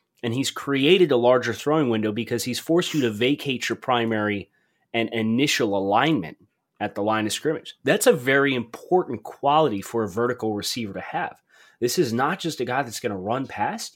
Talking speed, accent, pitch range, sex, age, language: 195 wpm, American, 110-140 Hz, male, 30-49, English